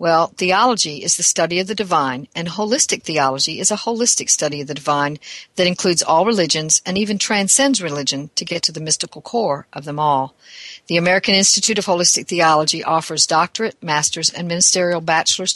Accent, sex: American, female